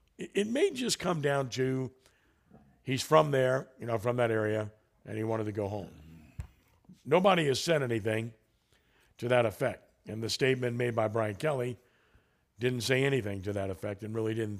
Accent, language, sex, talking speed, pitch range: American, English, male, 175 wpm, 110-130 Hz